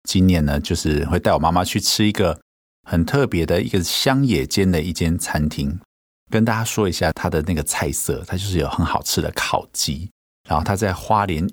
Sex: male